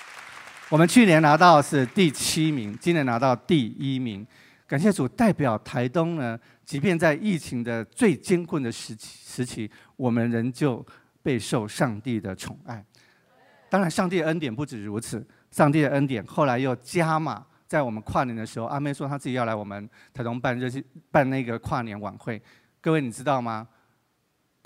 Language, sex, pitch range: Chinese, male, 120-165 Hz